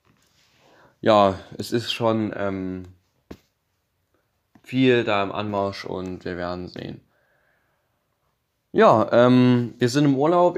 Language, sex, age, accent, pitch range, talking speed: German, male, 20-39, German, 100-120 Hz, 110 wpm